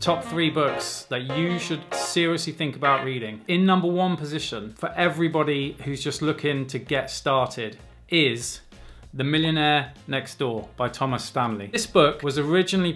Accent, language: British, English